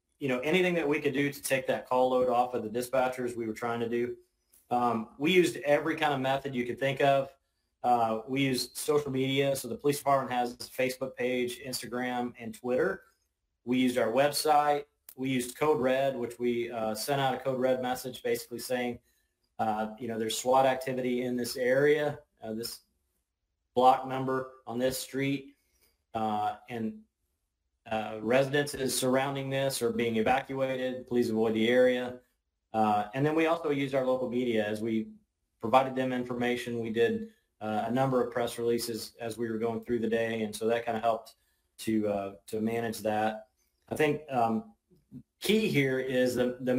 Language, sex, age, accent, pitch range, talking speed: English, male, 30-49, American, 115-130 Hz, 185 wpm